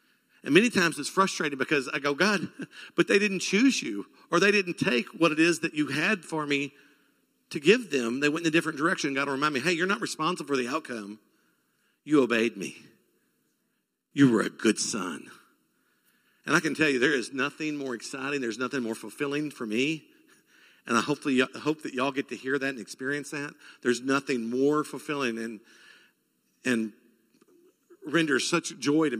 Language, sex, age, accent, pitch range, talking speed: English, male, 50-69, American, 115-150 Hz, 195 wpm